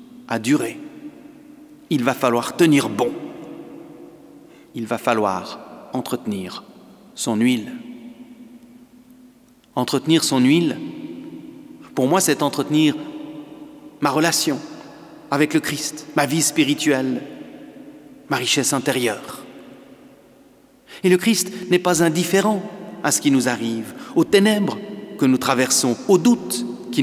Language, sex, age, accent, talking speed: French, male, 40-59, French, 110 wpm